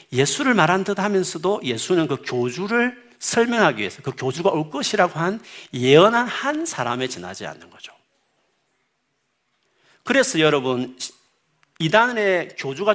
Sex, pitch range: male, 130-205 Hz